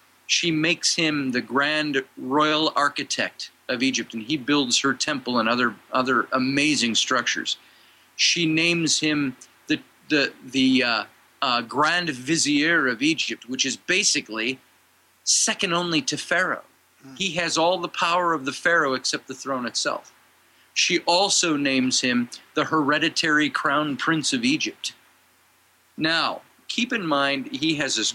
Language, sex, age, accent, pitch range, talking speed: English, male, 40-59, American, 130-165 Hz, 145 wpm